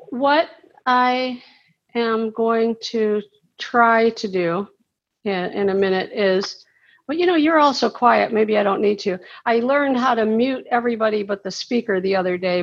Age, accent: 50-69, American